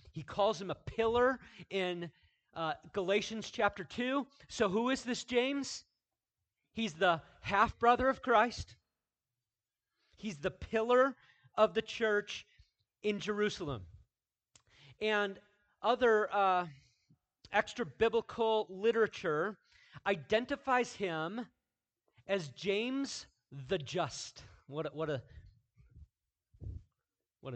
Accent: American